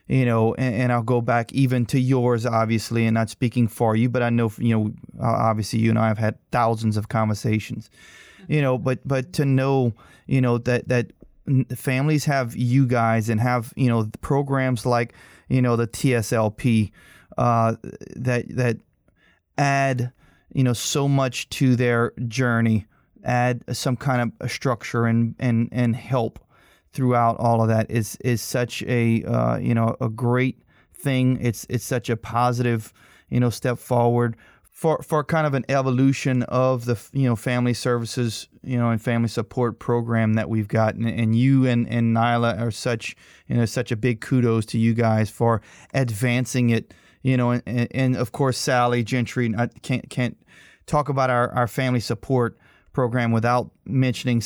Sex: male